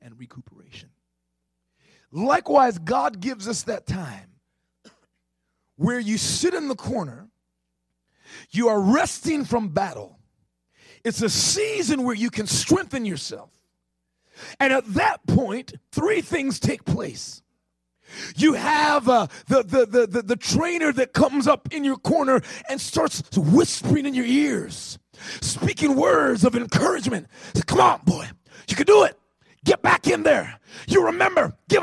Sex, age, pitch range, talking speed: male, 30-49, 185-295 Hz, 140 wpm